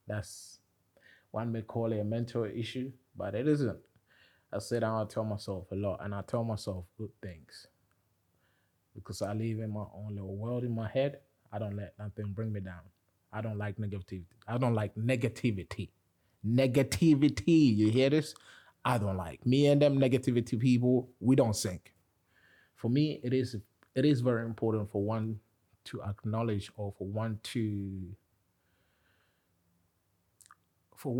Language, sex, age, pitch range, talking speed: English, male, 20-39, 95-120 Hz, 160 wpm